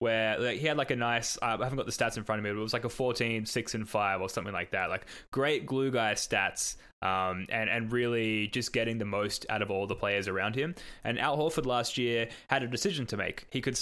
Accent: Australian